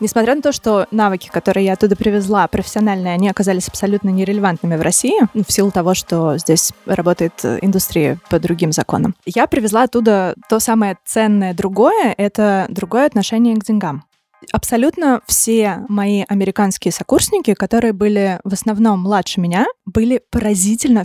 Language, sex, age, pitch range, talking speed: Russian, female, 20-39, 195-230 Hz, 145 wpm